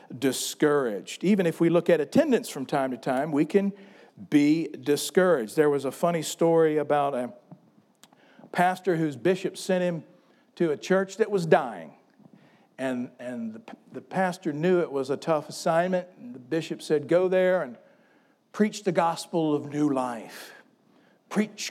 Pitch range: 150-190 Hz